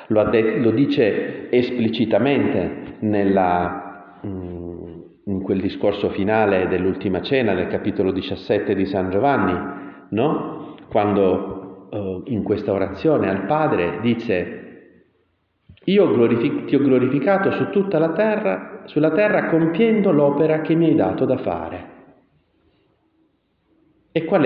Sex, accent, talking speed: male, native, 110 wpm